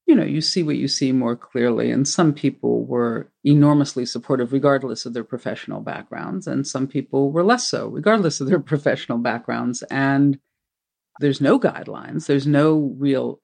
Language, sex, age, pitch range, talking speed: English, female, 50-69, 135-175 Hz, 170 wpm